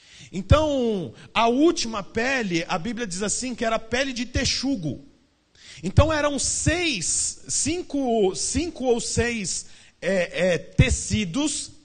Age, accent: 40-59, Brazilian